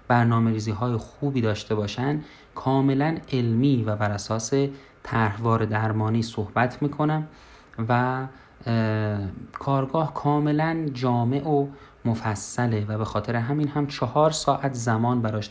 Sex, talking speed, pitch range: male, 110 wpm, 110-140 Hz